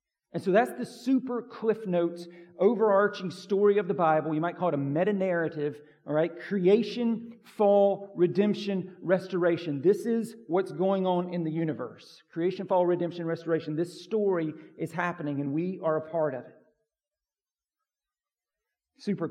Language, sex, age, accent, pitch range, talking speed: English, male, 40-59, American, 155-200 Hz, 150 wpm